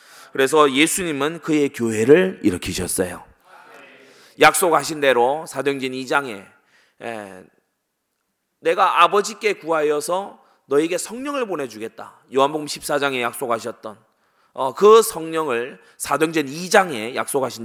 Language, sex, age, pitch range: Korean, male, 30-49, 125-190 Hz